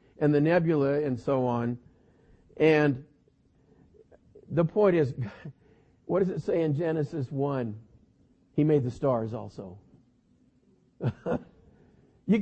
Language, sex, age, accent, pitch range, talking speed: English, male, 50-69, American, 130-185 Hz, 110 wpm